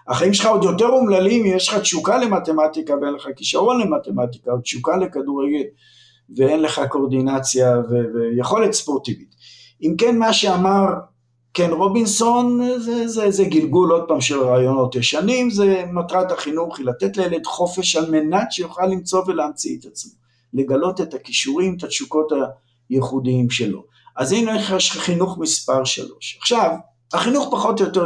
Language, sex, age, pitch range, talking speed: Hebrew, male, 50-69, 140-195 Hz, 150 wpm